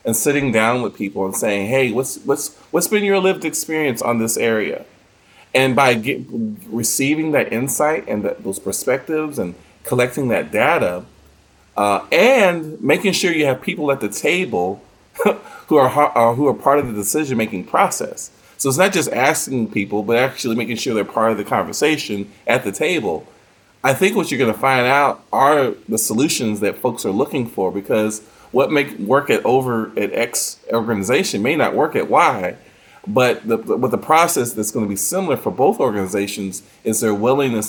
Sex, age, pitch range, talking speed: male, 30-49, 105-140 Hz, 180 wpm